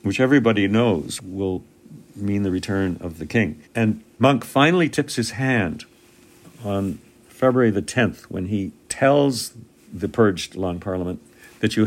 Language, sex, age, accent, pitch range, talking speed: English, male, 60-79, American, 95-115 Hz, 145 wpm